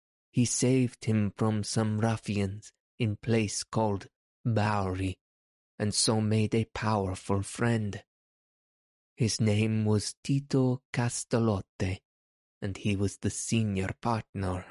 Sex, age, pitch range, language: male, 20-39, 100-115 Hz, English